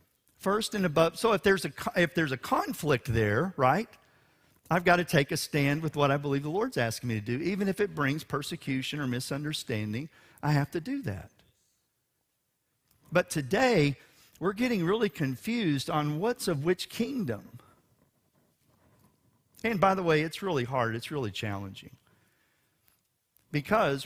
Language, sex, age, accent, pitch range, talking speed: English, male, 50-69, American, 130-175 Hz, 155 wpm